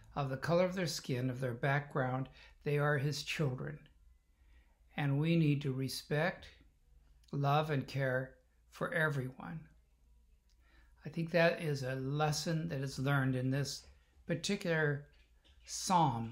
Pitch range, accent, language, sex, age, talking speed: 110-150 Hz, American, English, male, 60-79, 130 wpm